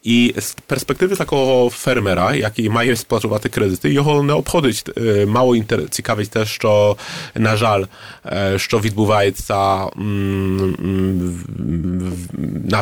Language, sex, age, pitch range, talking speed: Ukrainian, male, 30-49, 100-120 Hz, 115 wpm